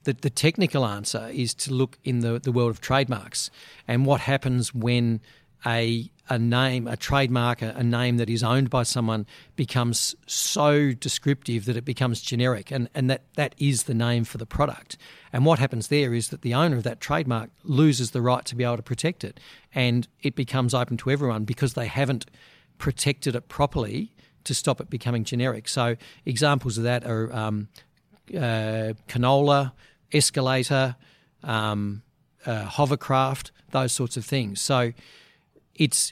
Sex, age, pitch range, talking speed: male, 40-59, 120-140 Hz, 170 wpm